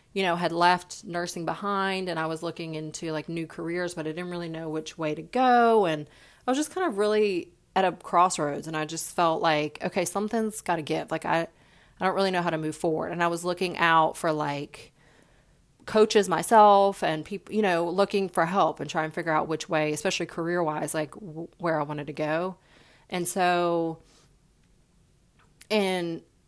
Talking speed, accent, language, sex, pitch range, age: 200 wpm, American, English, female, 160-190 Hz, 30-49